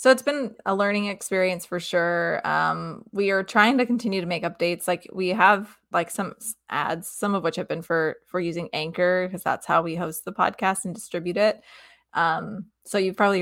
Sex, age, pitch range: female, 20-39, 175-210 Hz